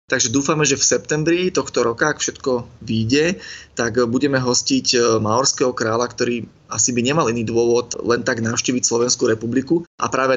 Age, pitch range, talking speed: 20-39, 120-140 Hz, 160 wpm